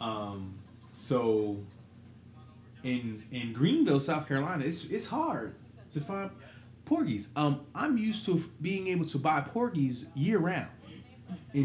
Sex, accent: male, American